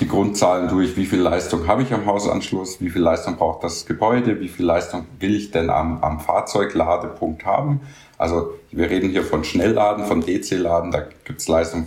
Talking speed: 190 wpm